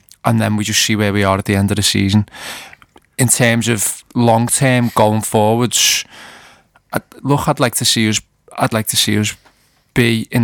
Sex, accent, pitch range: male, British, 110-125 Hz